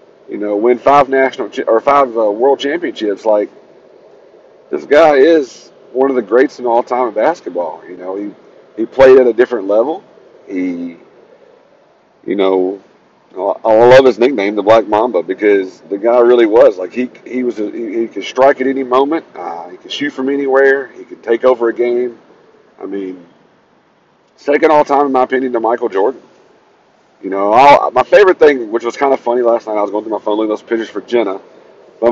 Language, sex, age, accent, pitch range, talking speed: English, male, 40-59, American, 105-145 Hz, 200 wpm